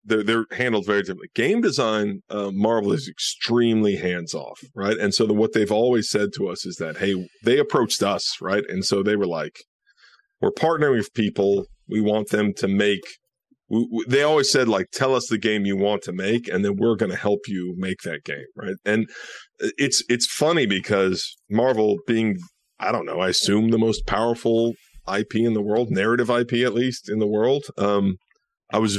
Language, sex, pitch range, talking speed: English, male, 100-120 Hz, 195 wpm